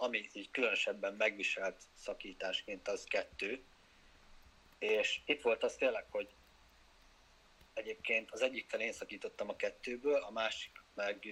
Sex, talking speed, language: male, 120 wpm, Hungarian